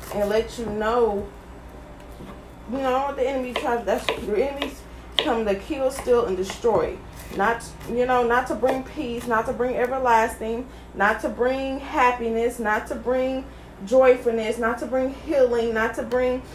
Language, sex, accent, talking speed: English, female, American, 160 wpm